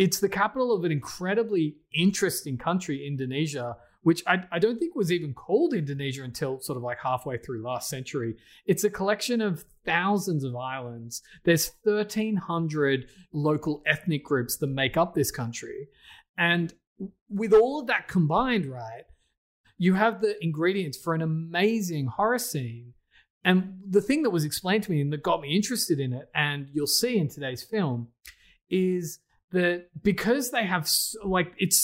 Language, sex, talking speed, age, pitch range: English, male, 165 wpm, 30-49, 140-195 Hz